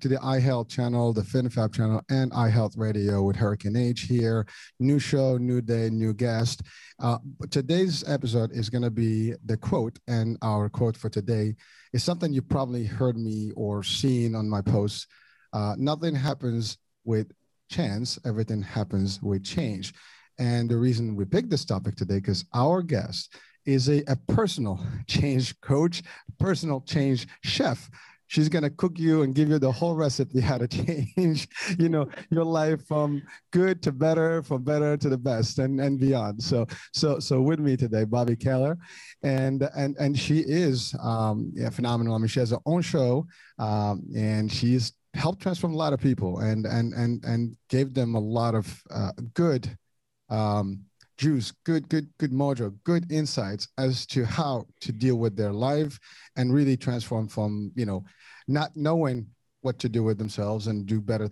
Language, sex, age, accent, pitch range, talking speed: English, male, 50-69, American, 110-145 Hz, 175 wpm